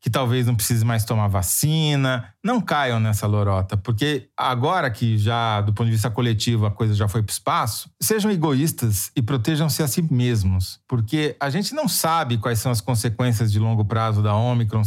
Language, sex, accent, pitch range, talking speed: Portuguese, male, Brazilian, 110-140 Hz, 195 wpm